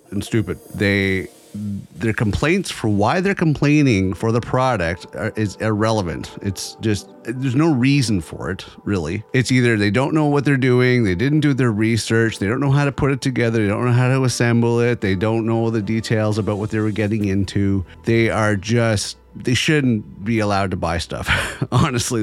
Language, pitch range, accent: English, 95-125 Hz, American